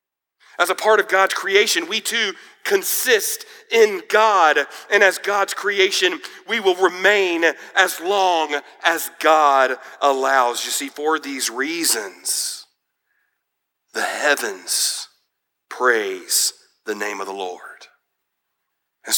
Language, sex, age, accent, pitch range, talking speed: English, male, 40-59, American, 135-200 Hz, 115 wpm